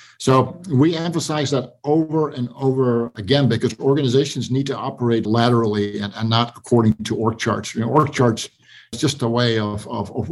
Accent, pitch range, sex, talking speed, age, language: American, 115-140 Hz, male, 185 wpm, 50-69, English